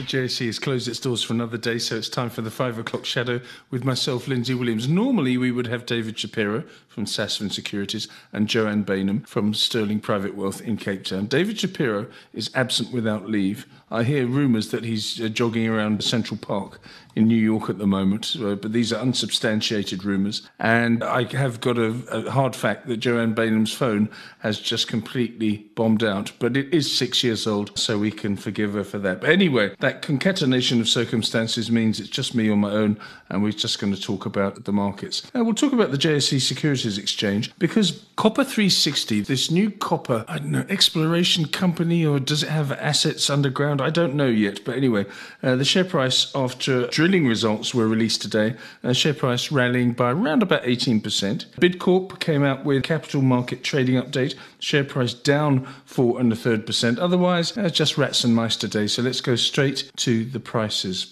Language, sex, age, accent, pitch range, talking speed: English, male, 50-69, British, 110-140 Hz, 195 wpm